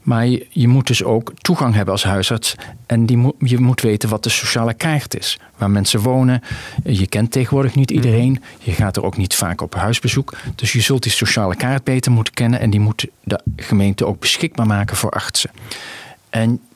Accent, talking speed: Dutch, 195 wpm